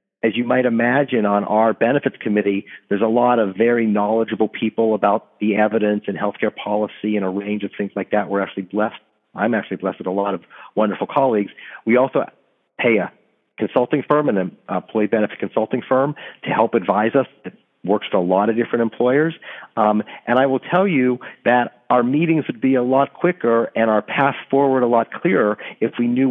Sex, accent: male, American